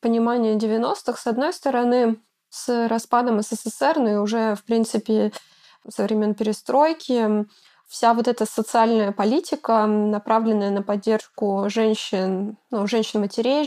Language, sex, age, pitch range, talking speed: Russian, female, 20-39, 210-240 Hz, 120 wpm